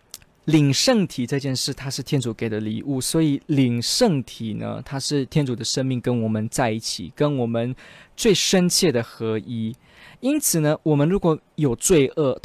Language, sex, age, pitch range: Chinese, male, 20-39, 115-150 Hz